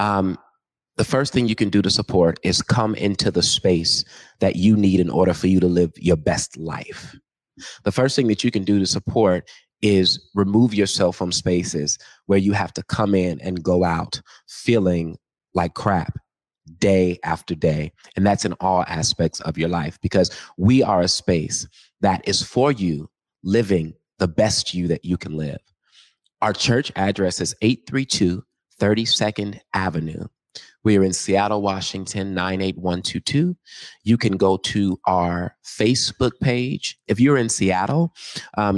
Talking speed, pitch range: 165 wpm, 90-110 Hz